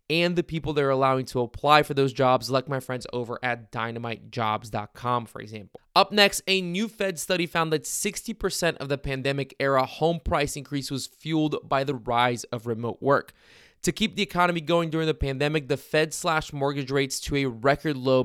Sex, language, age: male, English, 20-39